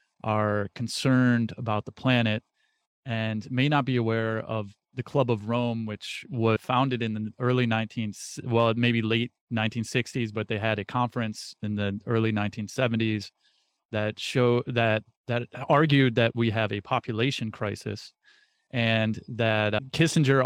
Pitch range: 110-125 Hz